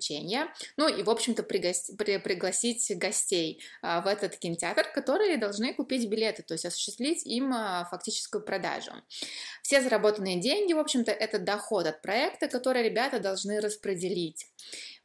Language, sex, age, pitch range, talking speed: Russian, female, 20-39, 180-230 Hz, 130 wpm